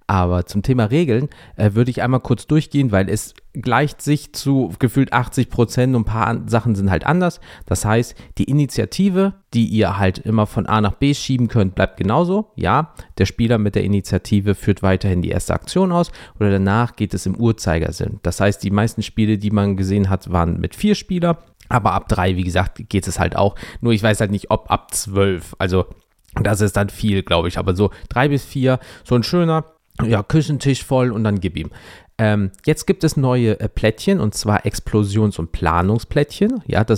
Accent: German